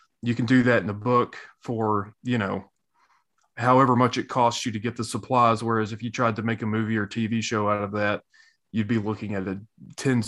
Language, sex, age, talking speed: English, male, 30-49, 220 wpm